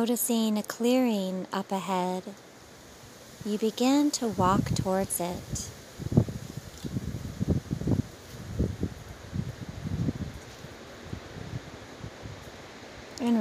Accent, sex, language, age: American, female, English, 30-49